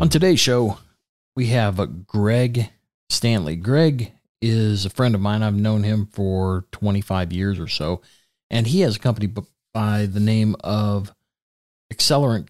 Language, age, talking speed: English, 40-59, 160 wpm